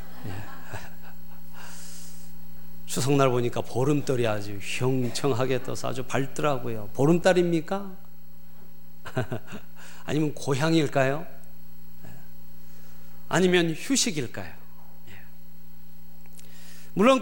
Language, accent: Korean, native